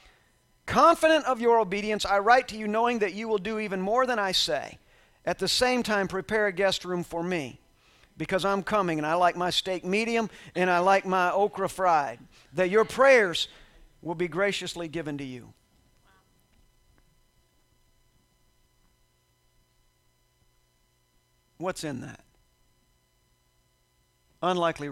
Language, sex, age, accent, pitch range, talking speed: English, male, 50-69, American, 180-225 Hz, 135 wpm